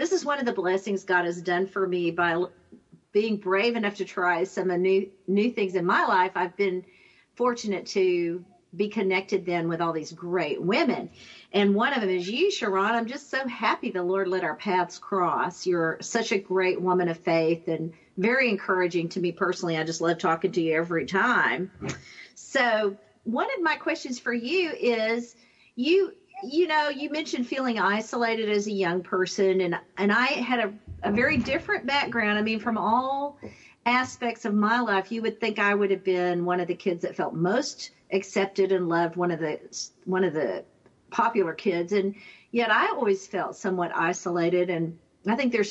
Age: 50-69